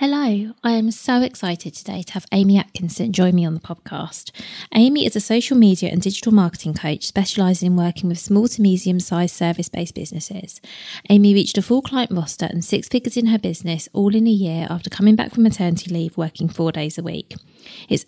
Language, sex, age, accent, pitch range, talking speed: English, female, 20-39, British, 175-210 Hz, 205 wpm